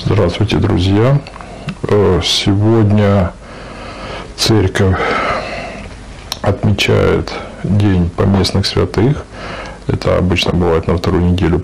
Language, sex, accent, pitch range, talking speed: Russian, male, native, 90-110 Hz, 70 wpm